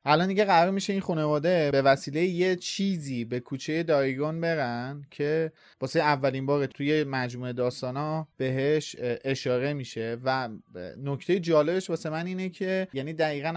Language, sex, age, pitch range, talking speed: Persian, male, 30-49, 135-170 Hz, 145 wpm